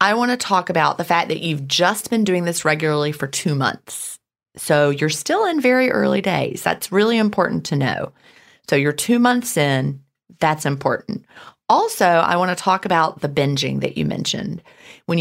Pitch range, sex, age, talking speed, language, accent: 145-190 Hz, female, 30-49, 180 wpm, English, American